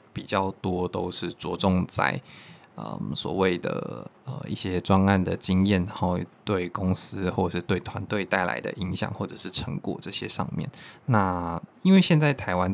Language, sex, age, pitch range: Chinese, male, 20-39, 90-110 Hz